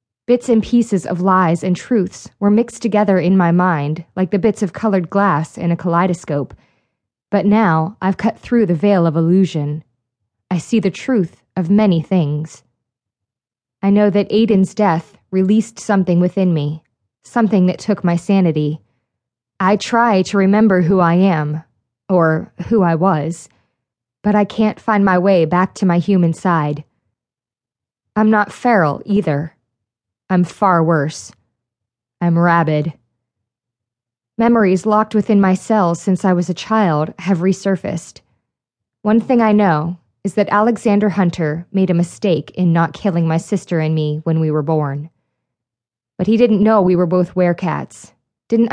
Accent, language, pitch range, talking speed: American, English, 150-200 Hz, 155 wpm